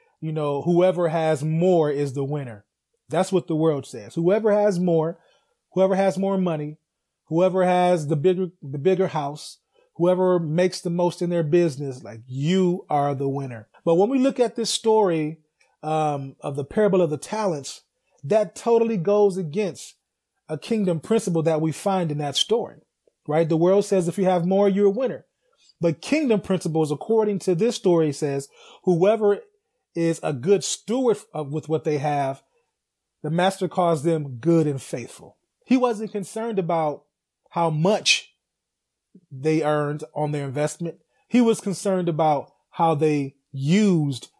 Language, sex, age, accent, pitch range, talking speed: English, male, 30-49, American, 155-200 Hz, 160 wpm